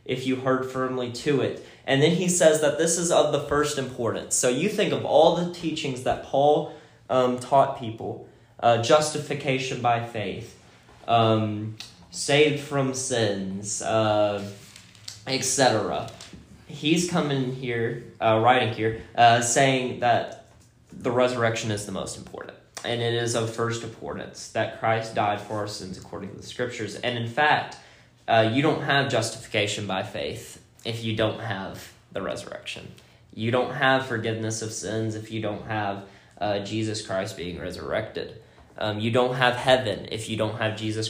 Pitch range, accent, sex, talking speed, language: 110-130 Hz, American, male, 160 wpm, English